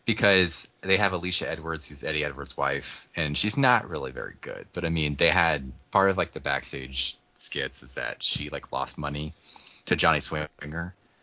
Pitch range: 75-100 Hz